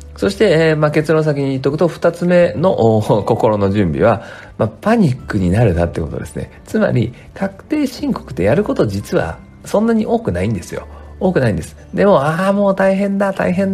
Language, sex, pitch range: Japanese, male, 95-155 Hz